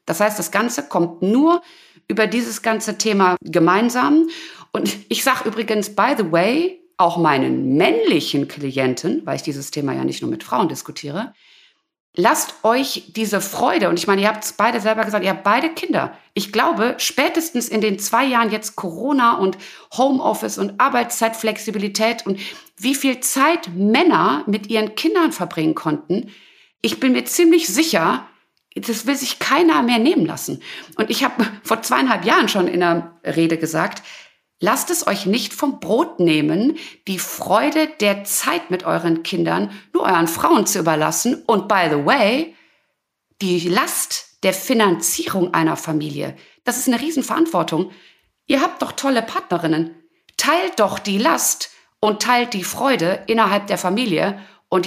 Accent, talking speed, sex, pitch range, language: German, 160 wpm, female, 185-270 Hz, German